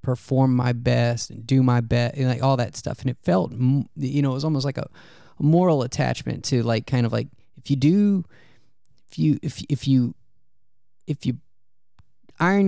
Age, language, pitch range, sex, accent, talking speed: 20-39, English, 125-150 Hz, male, American, 195 wpm